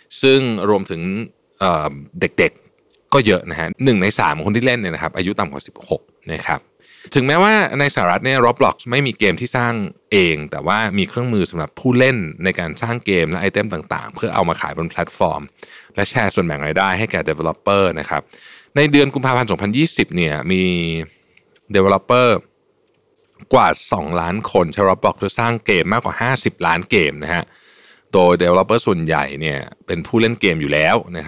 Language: Thai